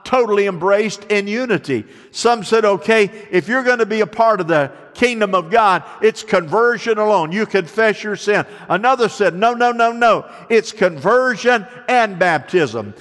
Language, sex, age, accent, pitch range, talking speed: English, male, 50-69, American, 180-230 Hz, 165 wpm